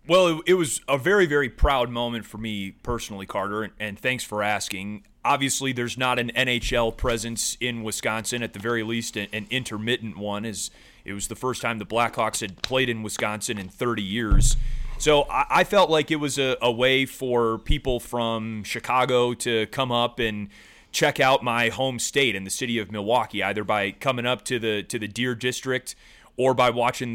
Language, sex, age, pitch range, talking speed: English, male, 30-49, 110-130 Hz, 200 wpm